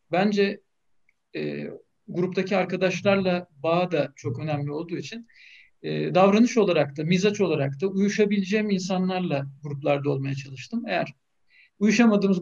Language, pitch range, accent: Turkish, 160-205 Hz, native